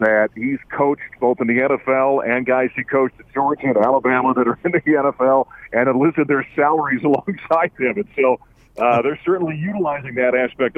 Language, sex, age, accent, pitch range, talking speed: English, male, 50-69, American, 120-145 Hz, 190 wpm